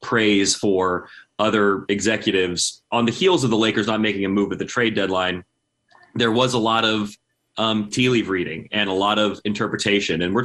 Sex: male